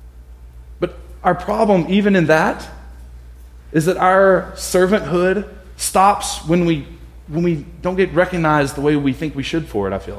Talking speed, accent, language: 160 wpm, American, English